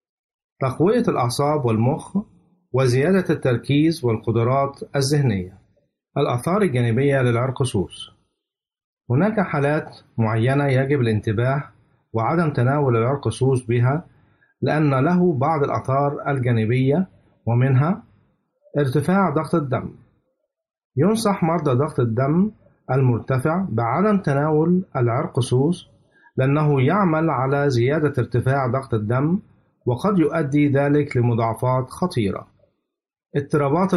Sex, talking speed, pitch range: male, 85 wpm, 125-160 Hz